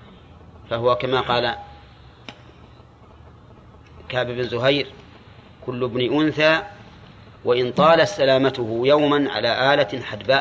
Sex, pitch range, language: male, 110-135 Hz, Arabic